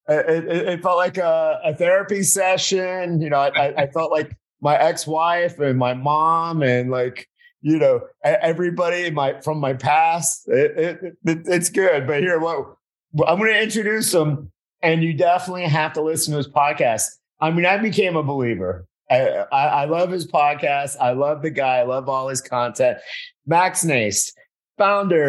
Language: English